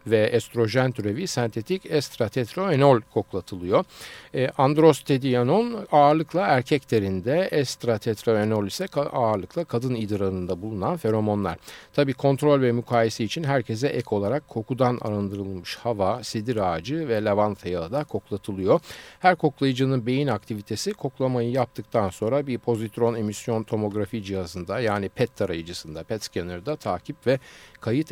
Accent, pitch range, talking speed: native, 105-145 Hz, 115 wpm